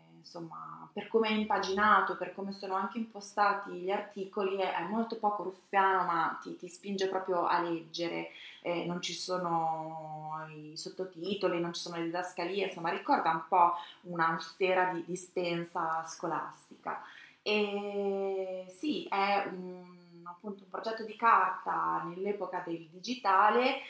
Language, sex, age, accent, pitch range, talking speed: Italian, female, 20-39, native, 170-200 Hz, 135 wpm